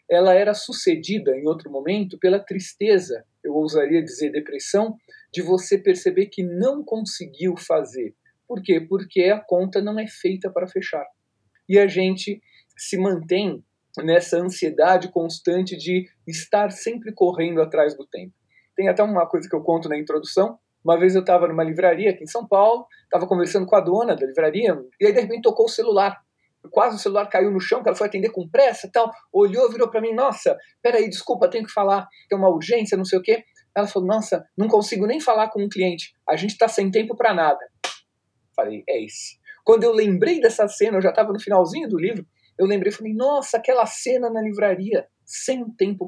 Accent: Brazilian